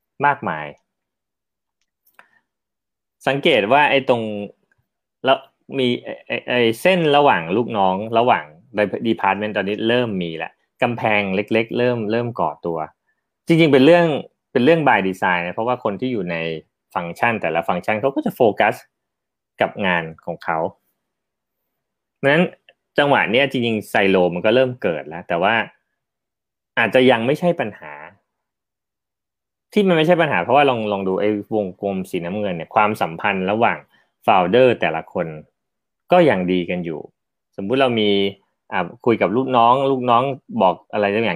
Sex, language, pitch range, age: male, Thai, 100-140 Hz, 30-49